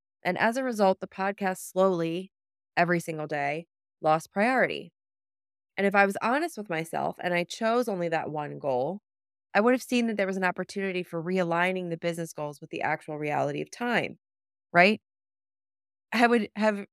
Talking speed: 175 wpm